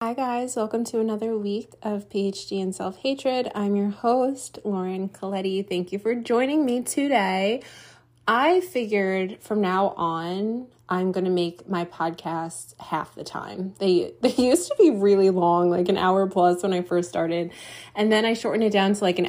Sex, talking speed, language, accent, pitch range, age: female, 180 wpm, English, American, 175-235 Hz, 20-39